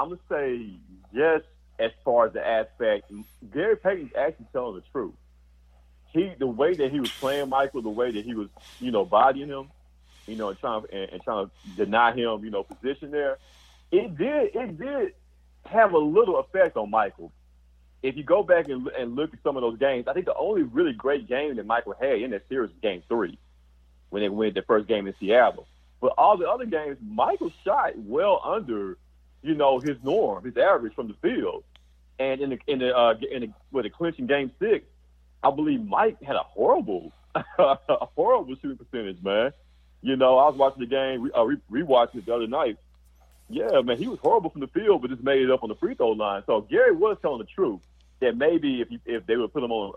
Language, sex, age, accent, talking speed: English, male, 40-59, American, 220 wpm